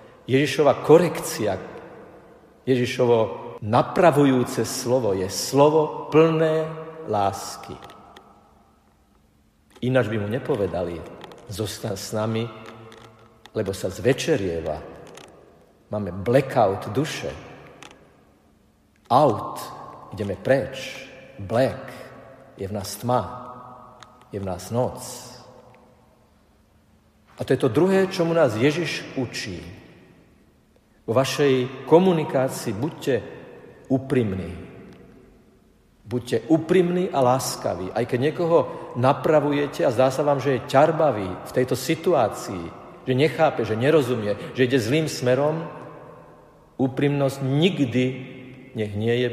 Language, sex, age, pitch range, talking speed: Slovak, male, 50-69, 110-145 Hz, 95 wpm